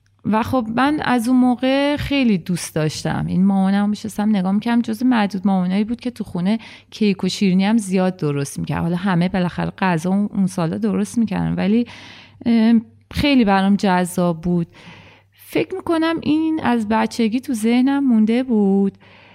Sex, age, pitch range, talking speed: female, 30-49, 175-240 Hz, 160 wpm